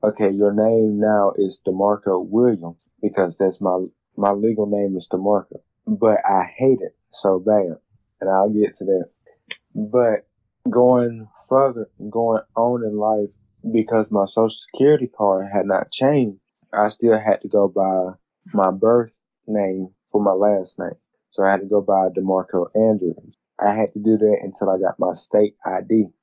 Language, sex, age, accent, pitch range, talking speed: English, male, 20-39, American, 95-110 Hz, 165 wpm